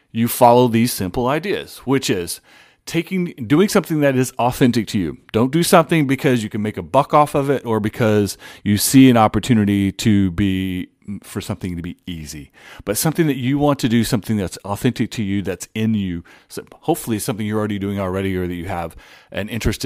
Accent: American